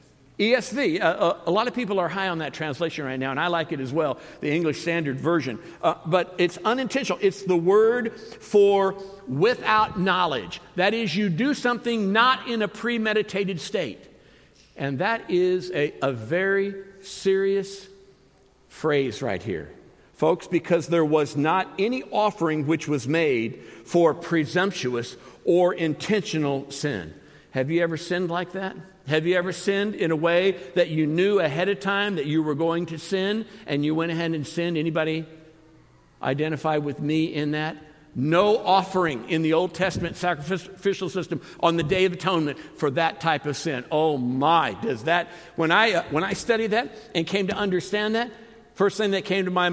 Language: English